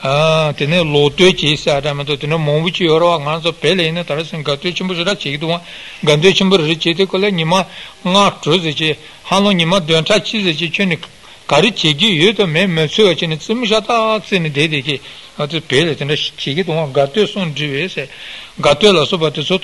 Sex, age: male, 60-79